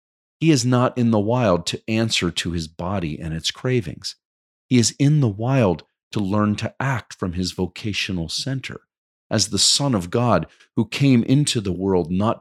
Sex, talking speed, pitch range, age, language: male, 185 wpm, 80-115 Hz, 40-59, English